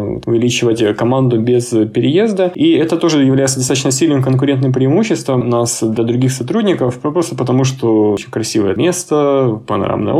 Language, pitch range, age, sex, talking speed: Russian, 120-140 Hz, 20-39, male, 140 wpm